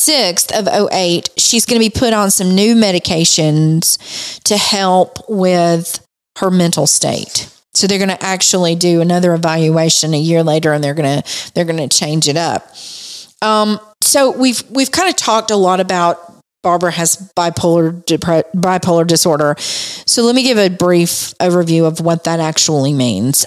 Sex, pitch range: female, 160-190 Hz